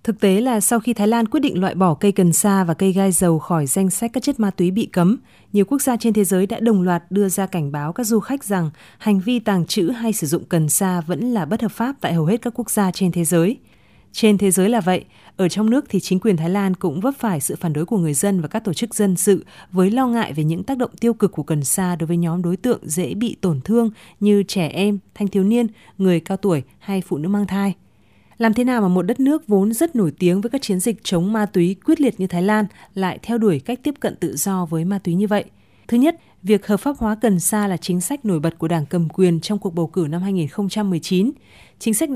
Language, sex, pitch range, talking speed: Vietnamese, female, 175-220 Hz, 270 wpm